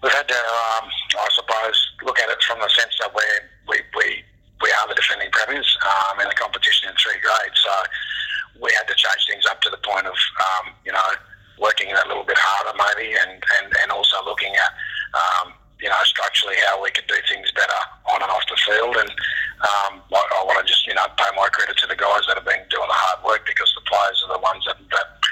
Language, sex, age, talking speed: English, male, 30-49, 235 wpm